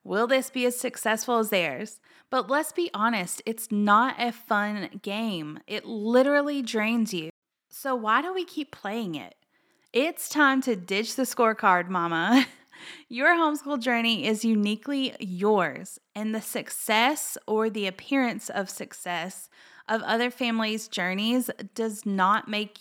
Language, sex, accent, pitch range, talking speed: English, female, American, 205-260 Hz, 145 wpm